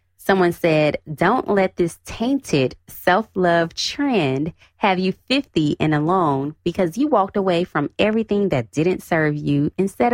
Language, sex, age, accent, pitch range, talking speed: English, female, 20-39, American, 135-185 Hz, 140 wpm